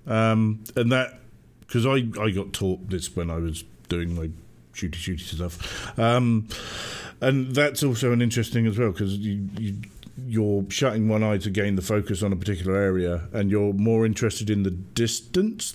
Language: English